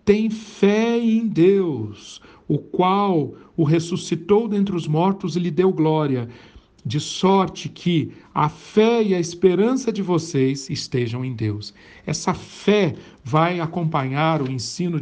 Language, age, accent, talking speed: Portuguese, 60-79, Brazilian, 135 wpm